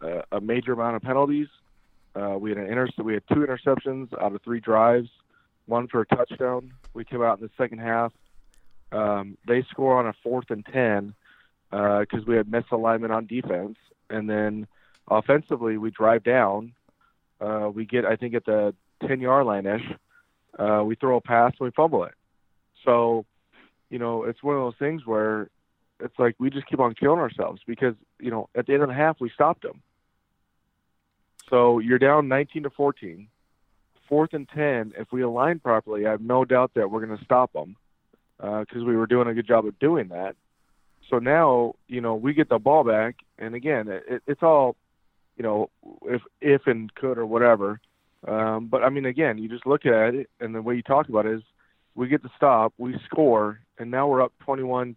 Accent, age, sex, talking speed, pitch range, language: American, 30-49, male, 200 wpm, 110-130 Hz, English